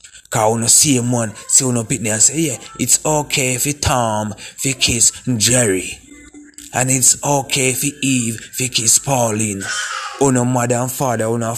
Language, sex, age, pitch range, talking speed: English, male, 20-39, 115-135 Hz, 170 wpm